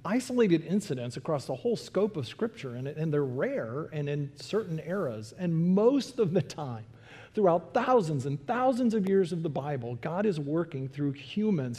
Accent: American